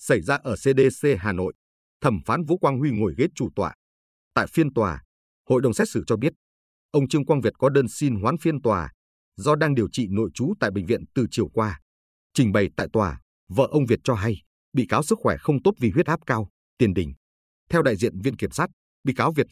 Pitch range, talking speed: 85-140 Hz, 235 wpm